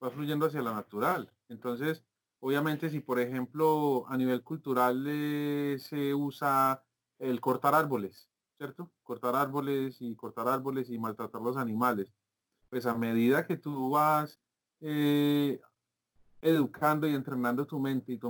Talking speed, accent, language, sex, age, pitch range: 140 wpm, Colombian, Spanish, male, 30-49, 120-145 Hz